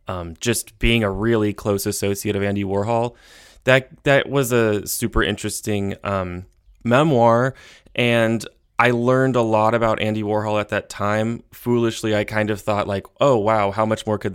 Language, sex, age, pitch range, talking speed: English, male, 20-39, 100-120 Hz, 170 wpm